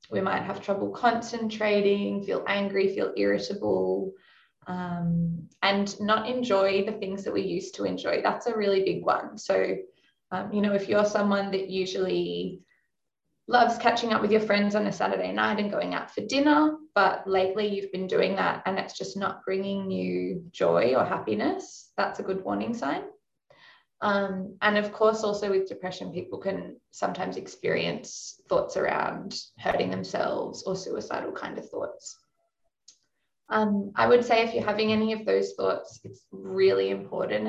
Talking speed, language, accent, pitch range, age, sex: 165 wpm, English, Australian, 185-225 Hz, 20-39, female